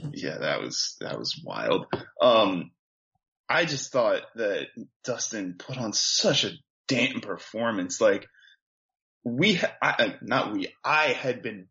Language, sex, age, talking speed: English, male, 10-29, 140 wpm